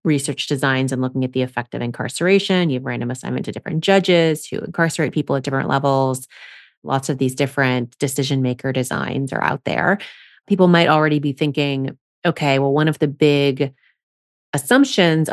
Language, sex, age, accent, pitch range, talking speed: English, female, 30-49, American, 140-170 Hz, 170 wpm